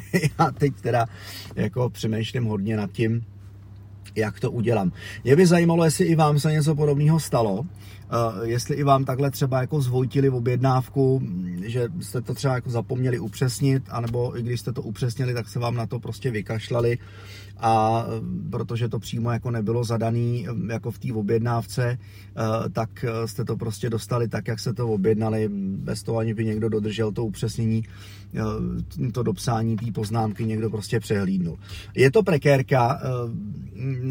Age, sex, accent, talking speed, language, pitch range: 30-49, male, native, 165 wpm, Czech, 110-130 Hz